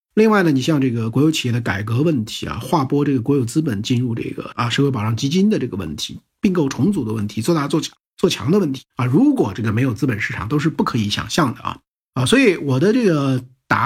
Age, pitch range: 50-69, 120-175 Hz